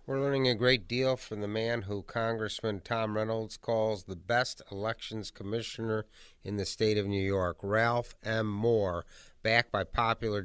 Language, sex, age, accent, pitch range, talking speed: English, male, 50-69, American, 100-115 Hz, 165 wpm